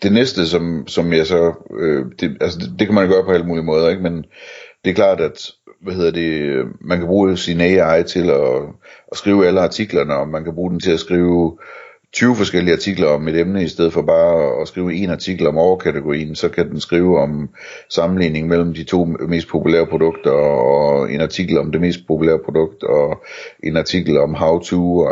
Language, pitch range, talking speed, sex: Danish, 80-95 Hz, 215 wpm, male